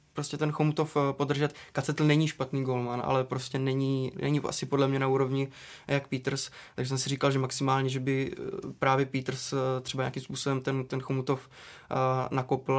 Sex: male